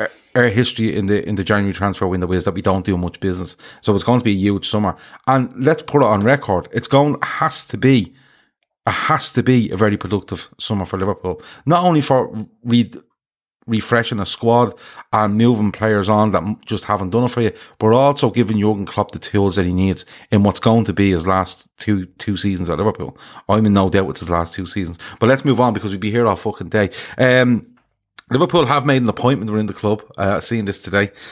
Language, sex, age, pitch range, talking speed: English, male, 30-49, 95-115 Hz, 230 wpm